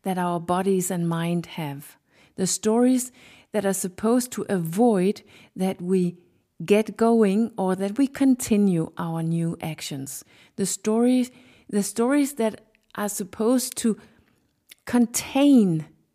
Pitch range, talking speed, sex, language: 185-240 Hz, 125 wpm, female, English